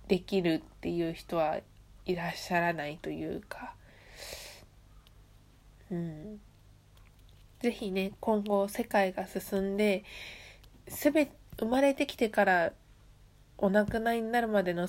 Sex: female